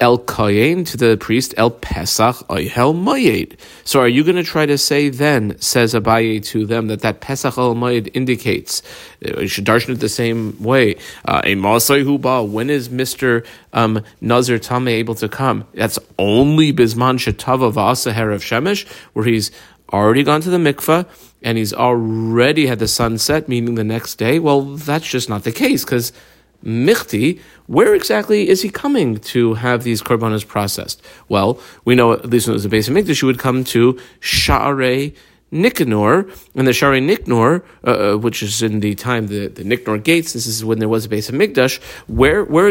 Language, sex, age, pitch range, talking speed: English, male, 40-59, 110-140 Hz, 185 wpm